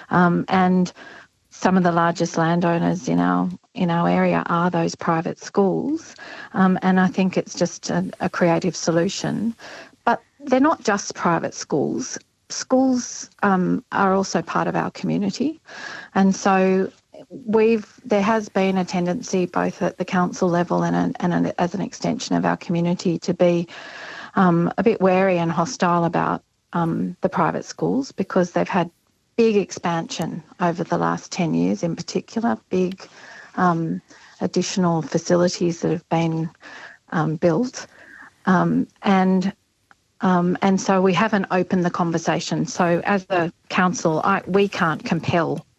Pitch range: 165-195 Hz